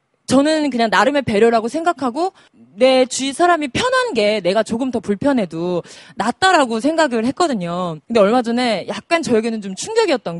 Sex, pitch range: female, 205-310 Hz